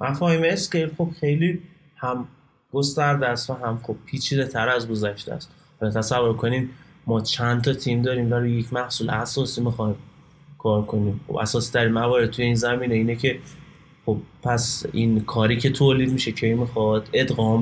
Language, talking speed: Persian, 160 wpm